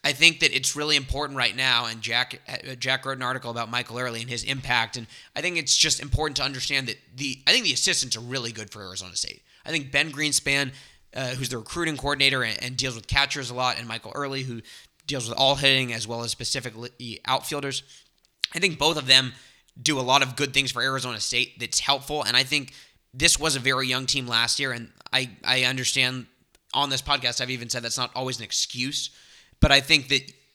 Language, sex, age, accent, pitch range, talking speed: English, male, 20-39, American, 125-145 Hz, 230 wpm